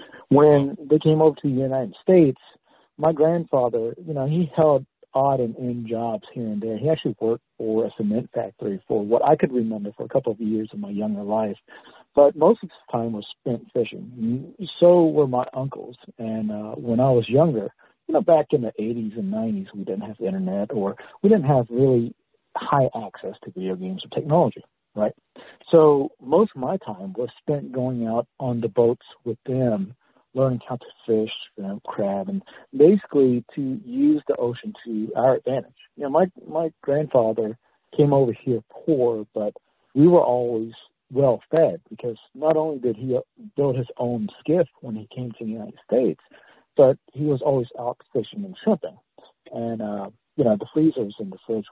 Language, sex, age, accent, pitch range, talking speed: English, male, 60-79, American, 115-155 Hz, 190 wpm